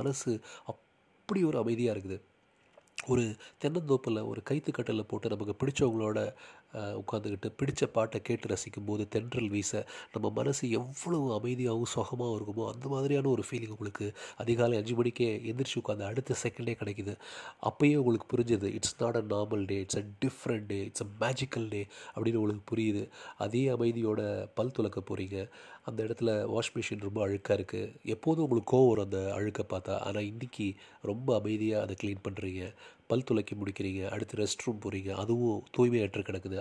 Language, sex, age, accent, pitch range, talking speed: Tamil, male, 30-49, native, 100-120 Hz, 145 wpm